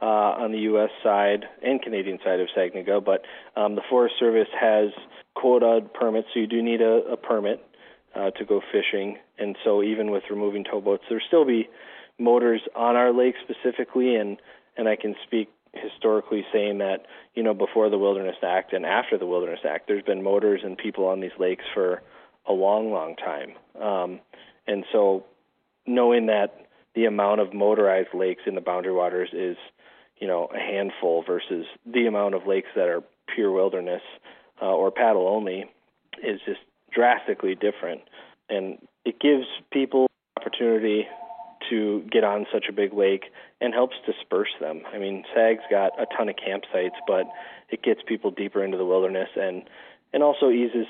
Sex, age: male, 30-49